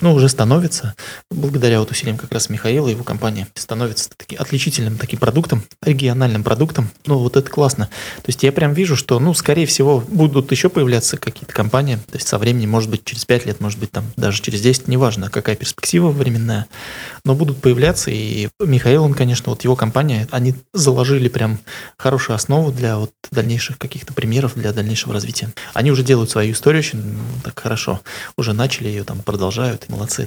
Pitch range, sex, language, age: 110-135 Hz, male, Russian, 20-39